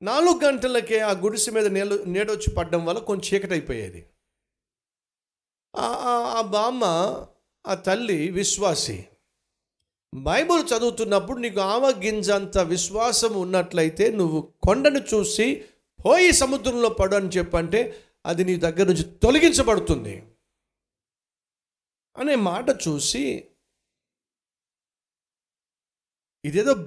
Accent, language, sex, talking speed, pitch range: native, Telugu, male, 90 wpm, 180-225 Hz